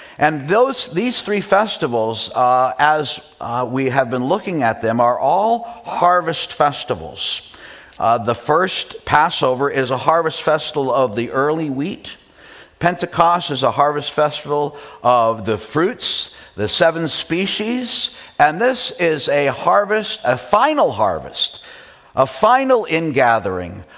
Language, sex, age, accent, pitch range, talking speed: English, male, 50-69, American, 135-185 Hz, 130 wpm